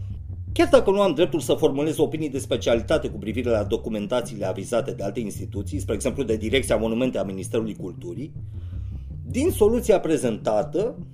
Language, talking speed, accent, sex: Romanian, 155 wpm, native, male